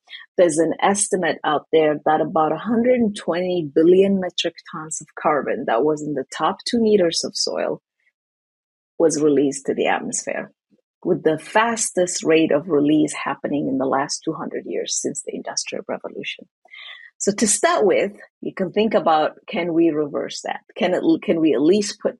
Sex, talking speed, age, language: female, 170 wpm, 30-49, English